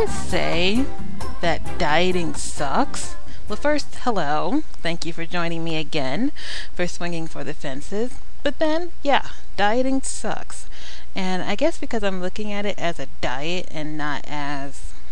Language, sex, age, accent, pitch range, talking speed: English, female, 30-49, American, 145-200 Hz, 145 wpm